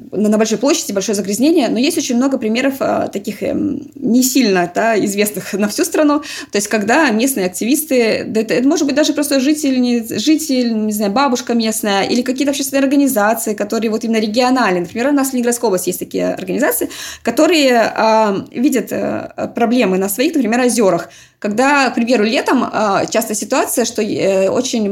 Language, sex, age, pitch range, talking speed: Russian, female, 20-39, 205-270 Hz, 160 wpm